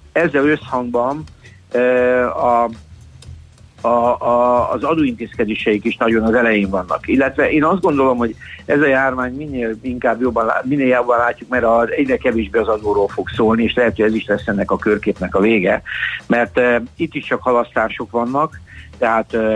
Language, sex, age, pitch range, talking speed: Hungarian, male, 60-79, 105-125 Hz, 165 wpm